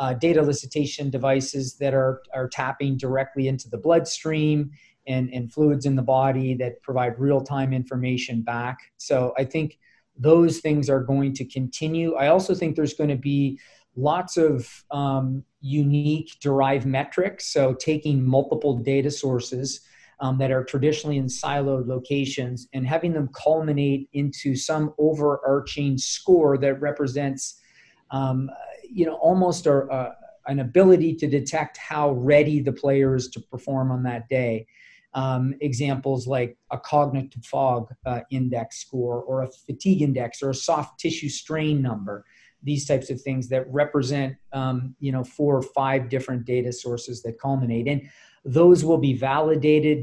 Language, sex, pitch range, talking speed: English, male, 130-145 Hz, 150 wpm